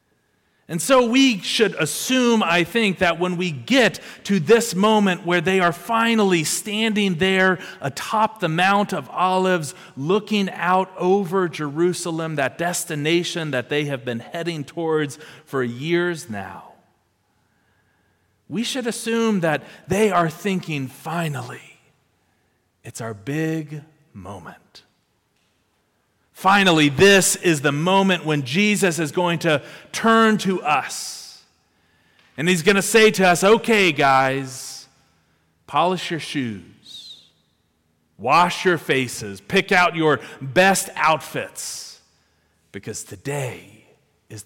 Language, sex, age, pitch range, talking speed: English, male, 40-59, 135-185 Hz, 120 wpm